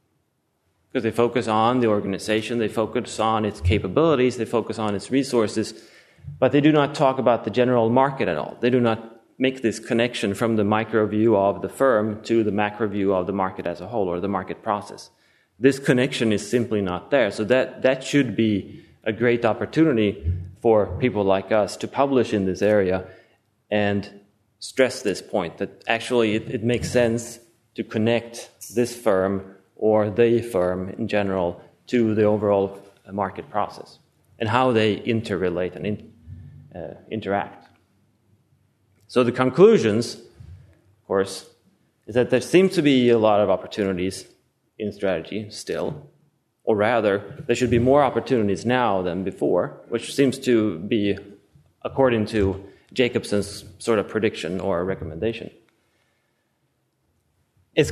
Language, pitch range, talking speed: English, 100-120 Hz, 155 wpm